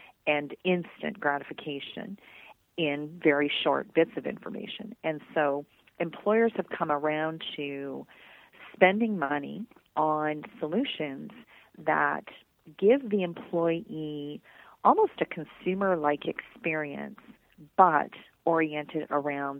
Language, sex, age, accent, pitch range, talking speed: English, female, 40-59, American, 145-180 Hz, 95 wpm